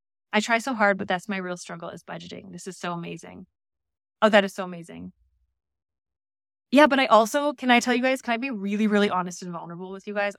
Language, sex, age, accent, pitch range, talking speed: English, female, 20-39, American, 175-235 Hz, 230 wpm